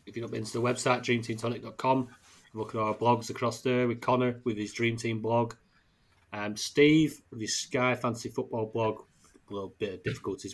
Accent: British